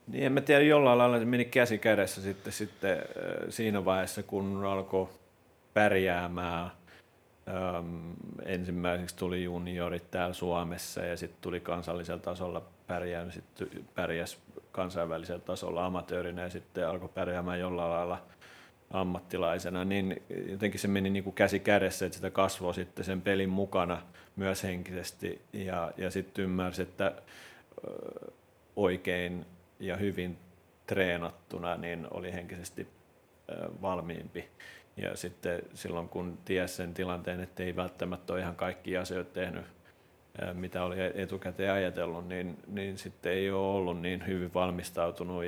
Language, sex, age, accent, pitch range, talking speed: Finnish, male, 30-49, native, 90-100 Hz, 130 wpm